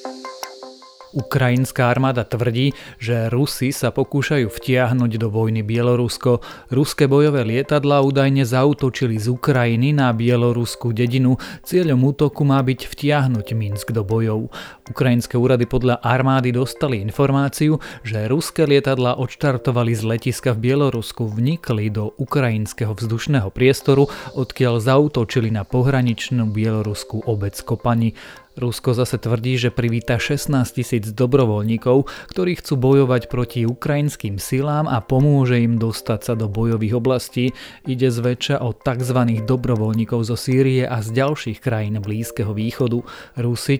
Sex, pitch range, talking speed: male, 115-135 Hz, 125 wpm